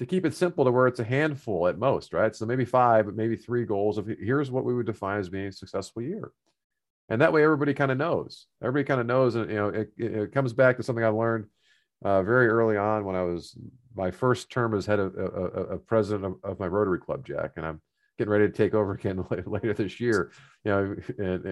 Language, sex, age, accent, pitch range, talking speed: English, male, 40-59, American, 100-125 Hz, 255 wpm